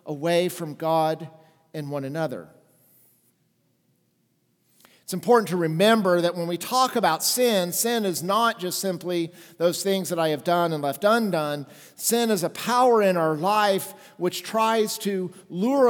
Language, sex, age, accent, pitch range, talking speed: English, male, 50-69, American, 175-230 Hz, 155 wpm